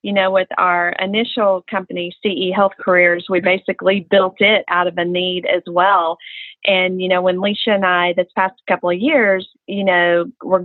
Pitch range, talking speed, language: 180-200 Hz, 190 wpm, English